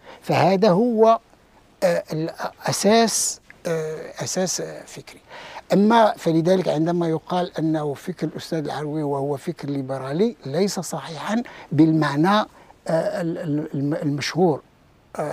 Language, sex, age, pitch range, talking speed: Arabic, male, 60-79, 160-215 Hz, 80 wpm